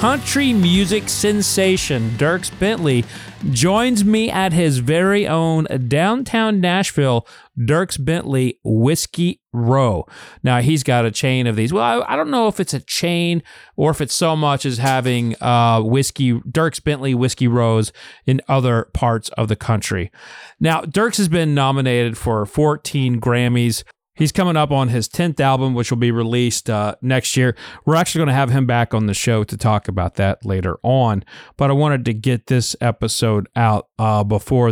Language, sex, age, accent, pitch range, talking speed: English, male, 40-59, American, 115-155 Hz, 175 wpm